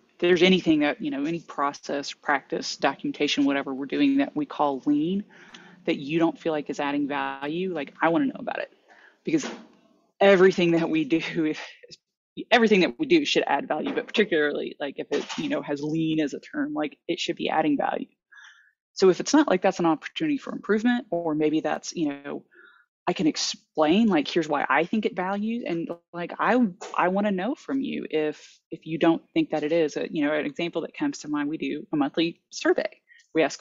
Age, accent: 20-39, American